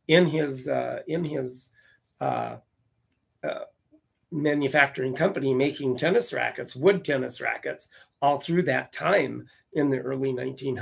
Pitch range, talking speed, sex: 130-175 Hz, 135 wpm, male